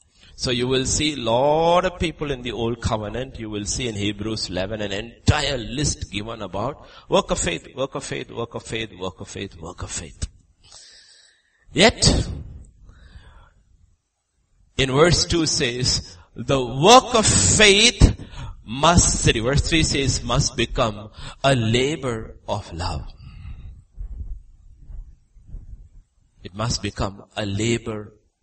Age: 50-69